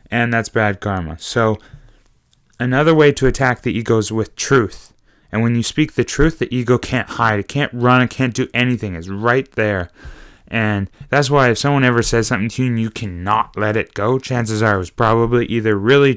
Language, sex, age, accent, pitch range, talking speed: English, male, 20-39, American, 110-130 Hz, 210 wpm